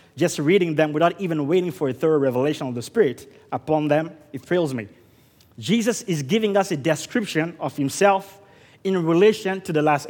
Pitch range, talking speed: 155-205 Hz, 185 wpm